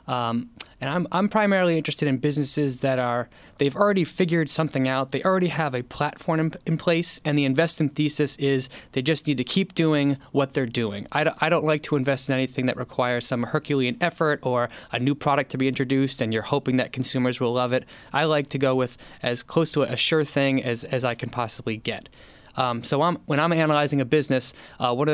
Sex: male